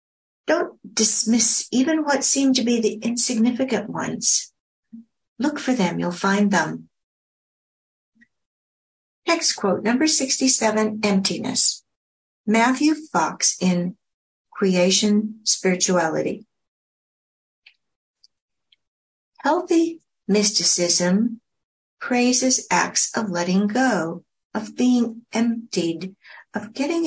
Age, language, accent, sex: 60-79, English, American, female